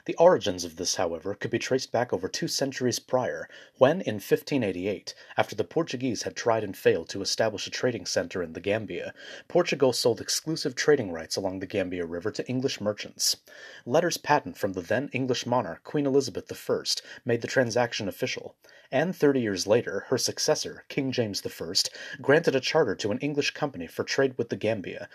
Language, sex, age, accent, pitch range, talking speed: English, male, 30-49, American, 110-150 Hz, 185 wpm